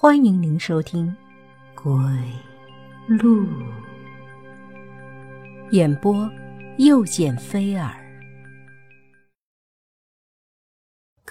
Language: Chinese